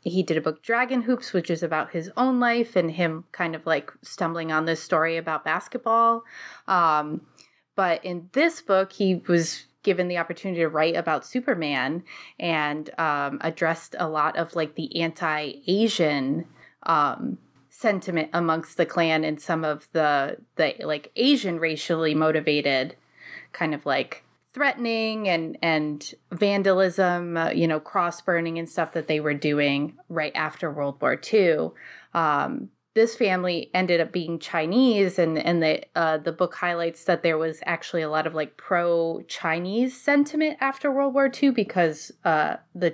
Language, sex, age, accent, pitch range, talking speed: English, female, 20-39, American, 160-200 Hz, 160 wpm